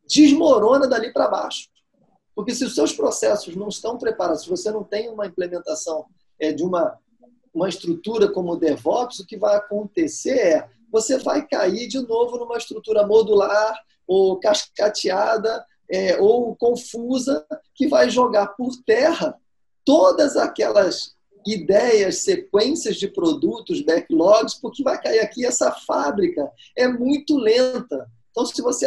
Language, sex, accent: Portuguese, male, Brazilian